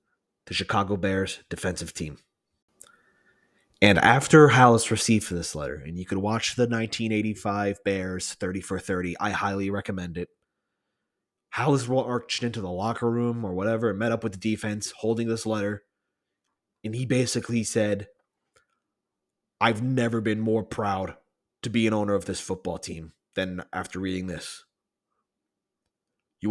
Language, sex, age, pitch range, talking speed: English, male, 20-39, 95-115 Hz, 145 wpm